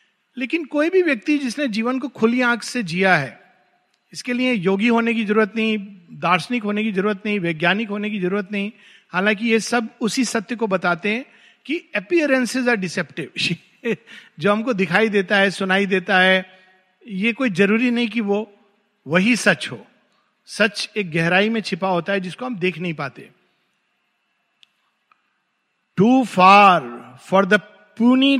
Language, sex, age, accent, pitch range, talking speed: Hindi, male, 50-69, native, 185-230 Hz, 160 wpm